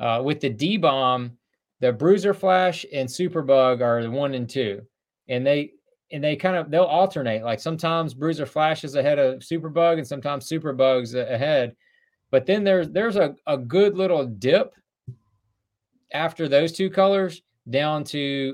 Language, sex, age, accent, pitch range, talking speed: English, male, 30-49, American, 120-155 Hz, 170 wpm